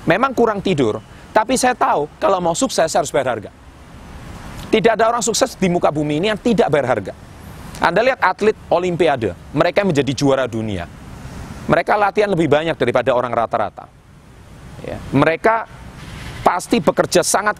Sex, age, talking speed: male, 30-49, 150 wpm